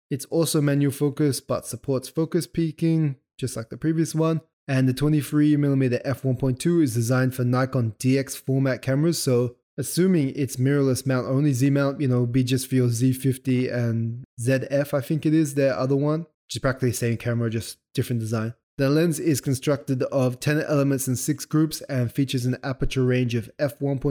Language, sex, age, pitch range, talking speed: English, male, 20-39, 125-145 Hz, 180 wpm